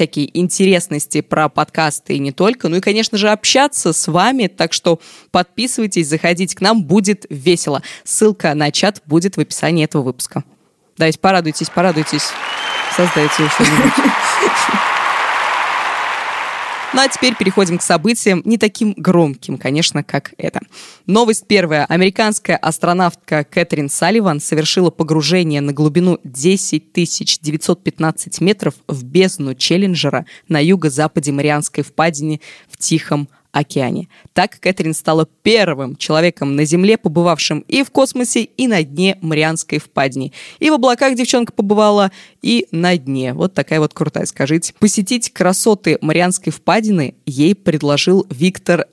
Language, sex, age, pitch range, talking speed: Russian, female, 20-39, 155-195 Hz, 130 wpm